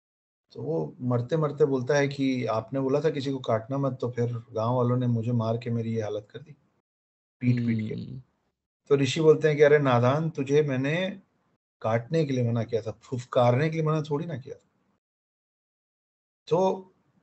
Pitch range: 115-155 Hz